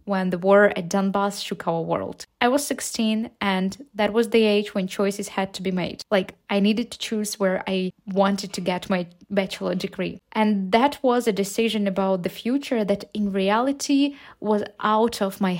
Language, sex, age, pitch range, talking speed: Ukrainian, female, 20-39, 200-230 Hz, 190 wpm